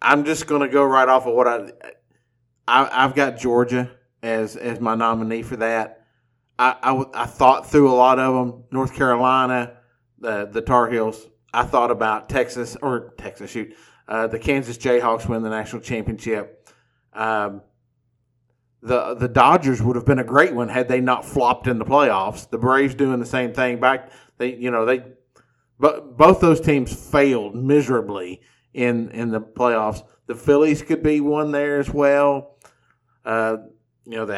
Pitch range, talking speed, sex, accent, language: 115-130 Hz, 175 wpm, male, American, English